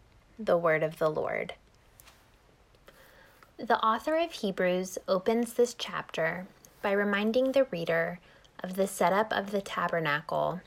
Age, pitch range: 10-29, 165-200 Hz